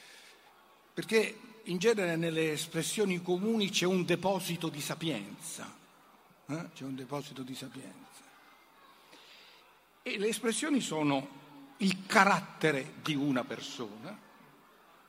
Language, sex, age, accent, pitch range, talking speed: Italian, male, 60-79, native, 145-205 Hz, 105 wpm